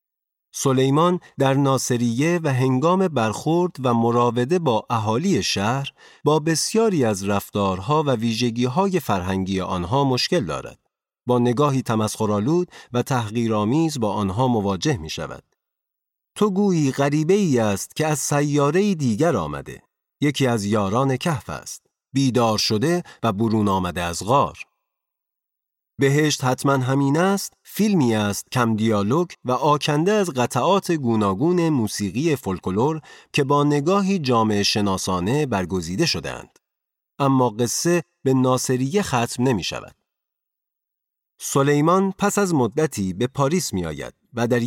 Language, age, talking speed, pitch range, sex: Persian, 40-59, 120 wpm, 110-155 Hz, male